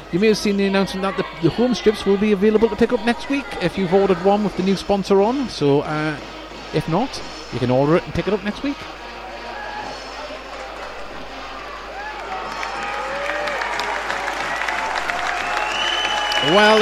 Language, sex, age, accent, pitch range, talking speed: English, male, 30-49, British, 165-205 Hz, 150 wpm